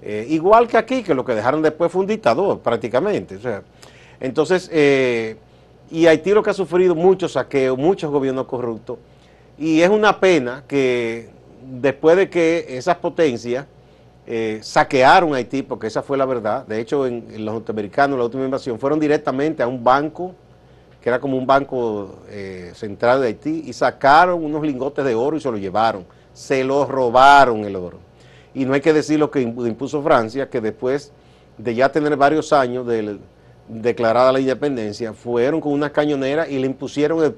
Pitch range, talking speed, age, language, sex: 115-155 Hz, 180 wpm, 40-59, Spanish, male